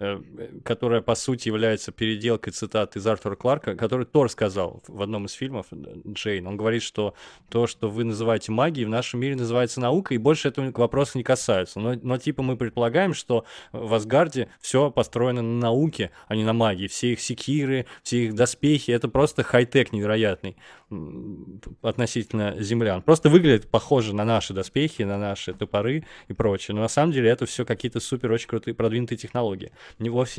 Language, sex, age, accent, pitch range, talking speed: Russian, male, 20-39, native, 110-140 Hz, 175 wpm